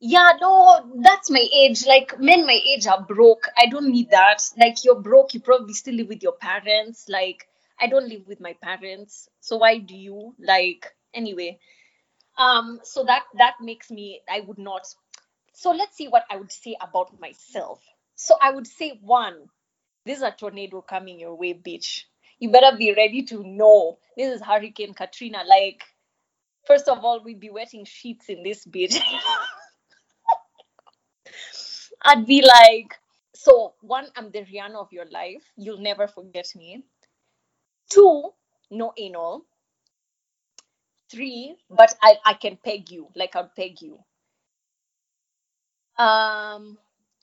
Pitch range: 195-255 Hz